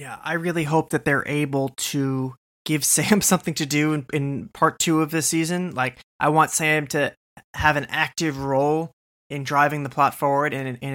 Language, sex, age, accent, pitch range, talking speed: English, male, 20-39, American, 130-155 Hz, 195 wpm